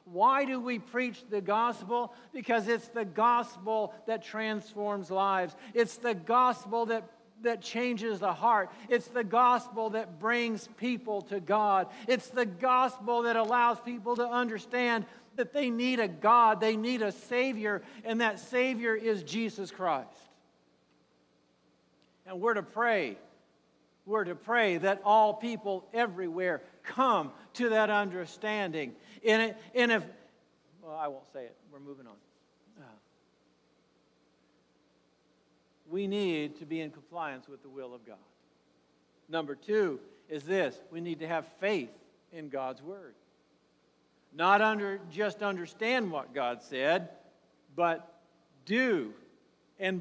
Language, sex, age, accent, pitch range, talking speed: English, male, 50-69, American, 170-235 Hz, 135 wpm